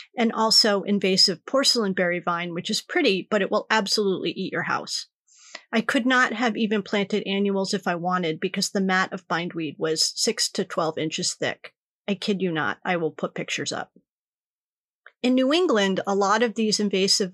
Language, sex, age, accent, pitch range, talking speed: English, female, 30-49, American, 185-230 Hz, 185 wpm